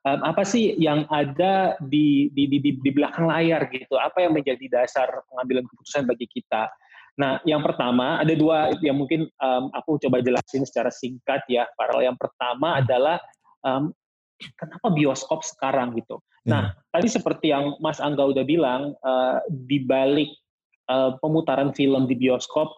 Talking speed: 155 wpm